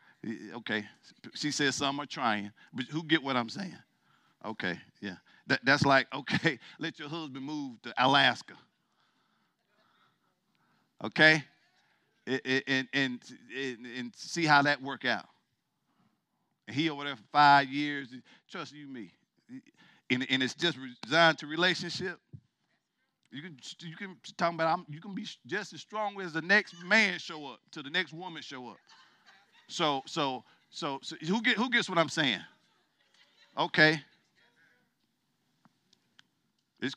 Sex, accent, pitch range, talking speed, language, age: male, American, 140-215 Hz, 140 wpm, English, 50-69